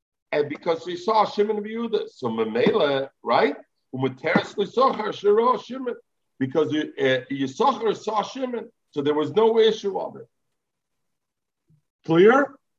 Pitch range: 130-210 Hz